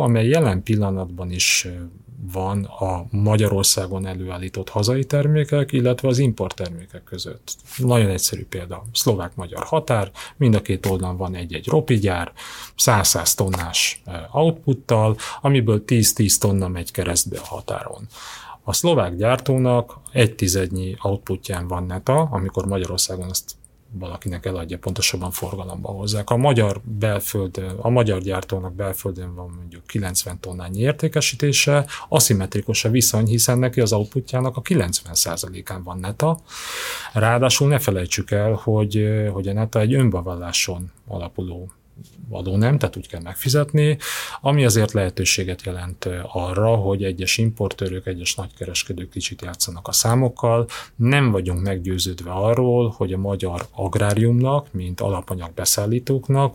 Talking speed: 125 wpm